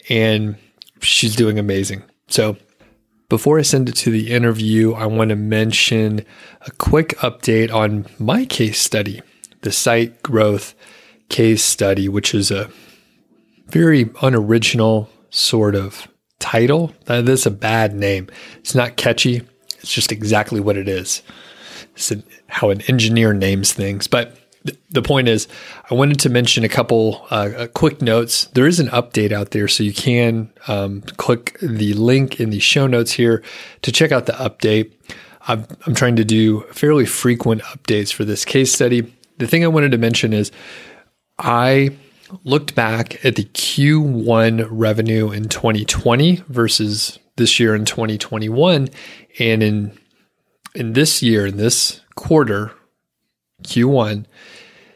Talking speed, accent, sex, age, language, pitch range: 145 wpm, American, male, 30-49, English, 105-125 Hz